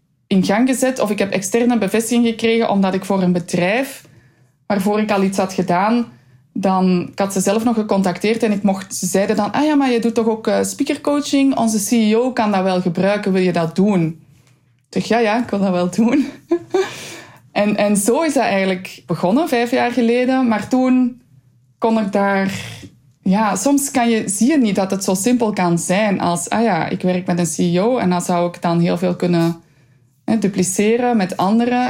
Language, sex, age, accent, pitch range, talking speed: Dutch, female, 20-39, Dutch, 175-220 Hz, 205 wpm